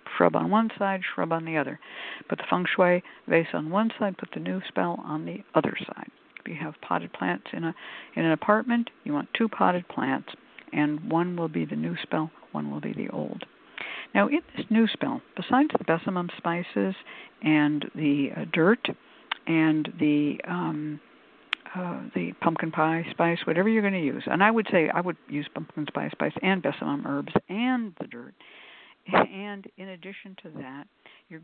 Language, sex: English, female